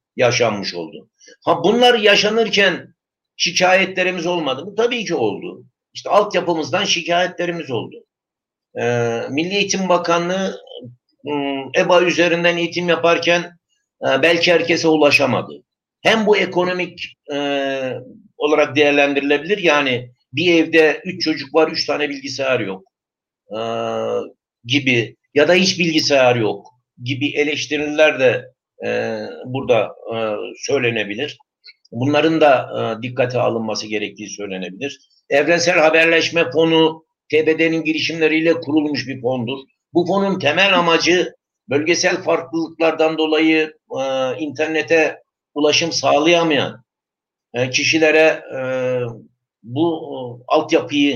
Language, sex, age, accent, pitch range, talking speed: Turkish, male, 60-79, native, 140-175 Hz, 95 wpm